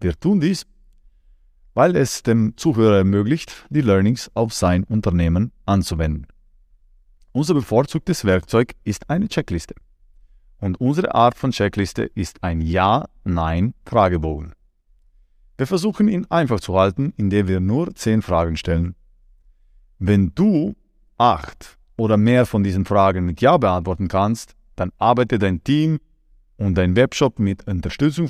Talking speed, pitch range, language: 130 wpm, 85-125 Hz, German